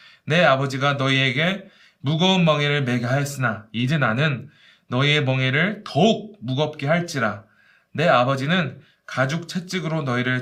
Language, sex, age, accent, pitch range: Korean, male, 20-39, native, 130-185 Hz